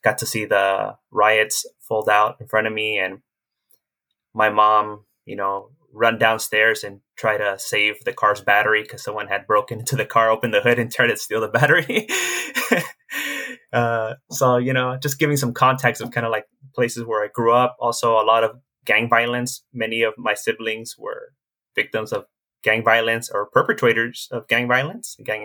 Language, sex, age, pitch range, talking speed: English, male, 20-39, 110-130 Hz, 185 wpm